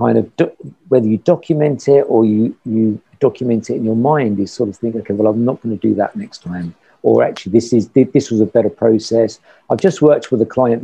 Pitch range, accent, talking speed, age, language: 110-150 Hz, British, 250 wpm, 50-69, English